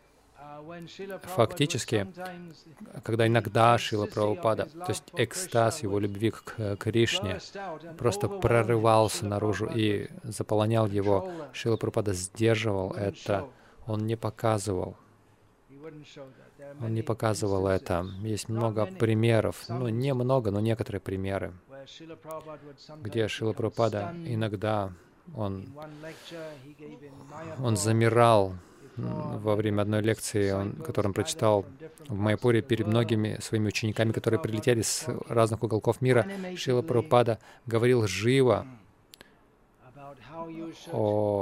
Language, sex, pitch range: Russian, male, 110-135 Hz